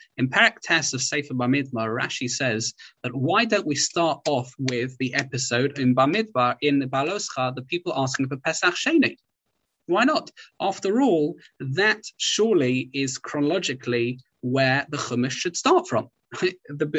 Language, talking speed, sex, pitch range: English, 150 wpm, male, 130-195 Hz